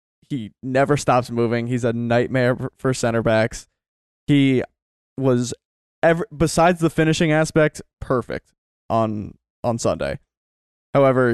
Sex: male